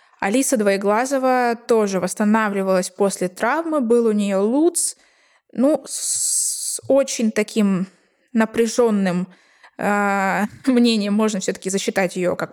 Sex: female